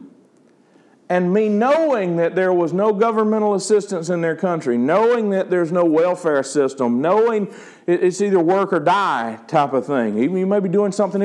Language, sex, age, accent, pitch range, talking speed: English, male, 50-69, American, 140-225 Hz, 170 wpm